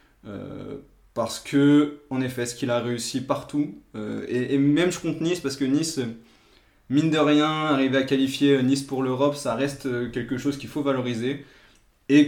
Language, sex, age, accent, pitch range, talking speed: French, male, 20-39, French, 115-140 Hz, 180 wpm